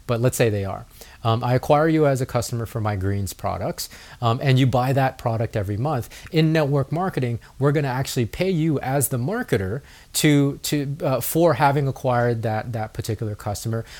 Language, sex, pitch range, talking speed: English, male, 115-140 Hz, 195 wpm